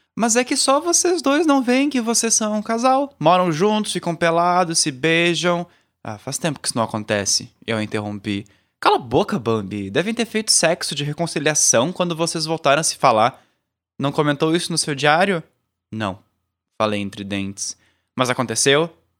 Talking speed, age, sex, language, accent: 175 wpm, 20-39, male, Portuguese, Brazilian